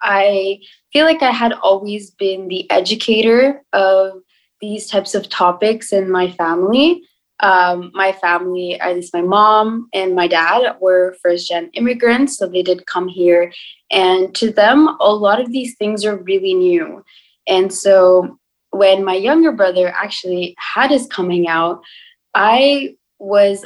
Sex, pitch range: female, 185-235 Hz